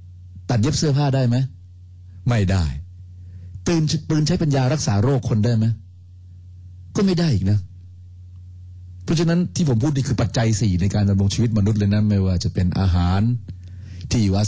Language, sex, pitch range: Thai, male, 90-120 Hz